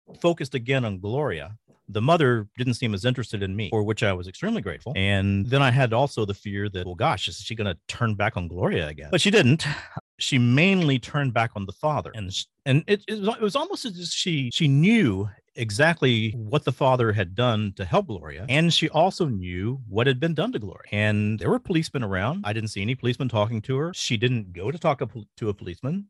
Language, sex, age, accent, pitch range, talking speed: English, male, 40-59, American, 105-140 Hz, 225 wpm